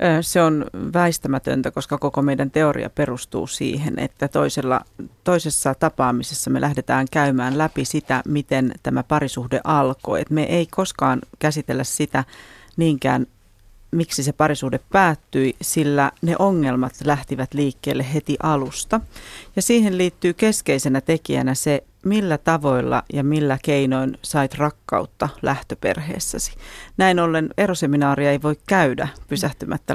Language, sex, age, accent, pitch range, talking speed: Finnish, female, 30-49, native, 135-165 Hz, 120 wpm